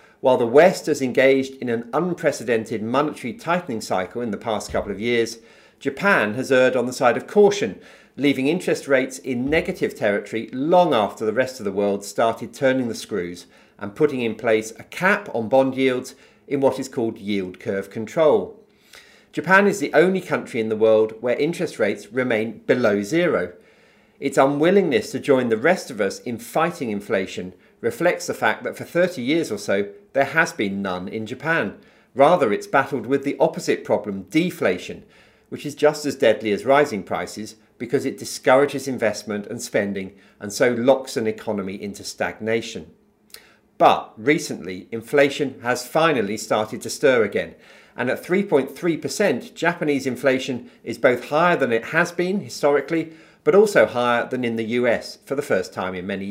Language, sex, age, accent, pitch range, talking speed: English, male, 50-69, British, 110-150 Hz, 175 wpm